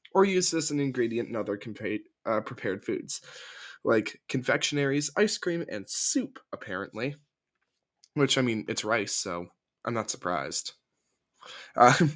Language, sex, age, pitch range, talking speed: English, male, 20-39, 110-155 Hz, 140 wpm